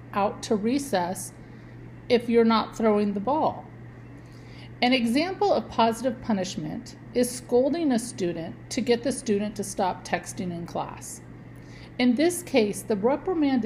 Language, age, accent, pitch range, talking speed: English, 50-69, American, 200-255 Hz, 140 wpm